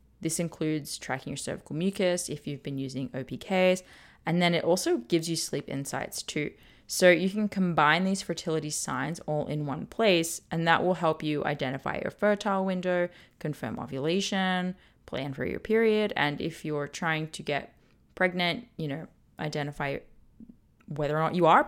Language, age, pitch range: English, 20-39, 150-185 Hz